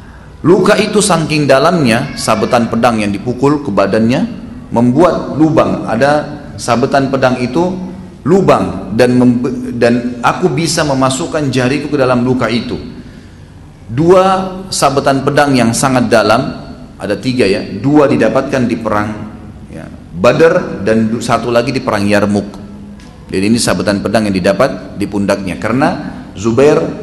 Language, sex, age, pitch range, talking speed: Indonesian, male, 40-59, 115-175 Hz, 130 wpm